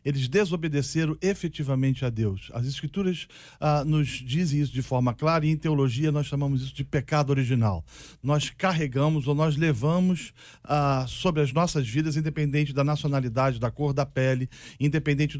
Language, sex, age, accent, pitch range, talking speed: Portuguese, male, 40-59, Brazilian, 135-170 Hz, 160 wpm